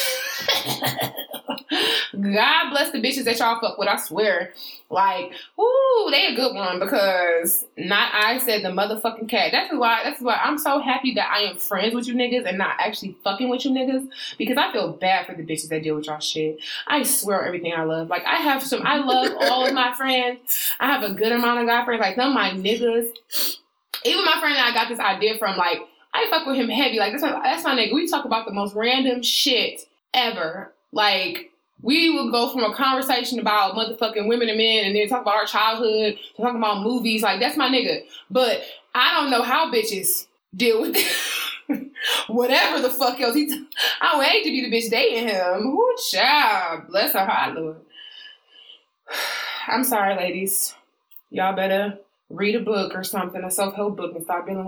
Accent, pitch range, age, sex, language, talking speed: American, 195-265 Hz, 20-39, female, English, 200 wpm